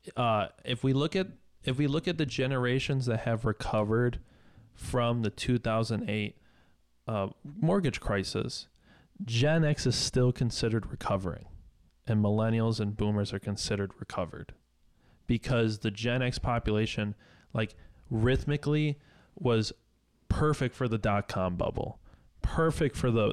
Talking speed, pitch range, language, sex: 125 wpm, 105-135 Hz, English, male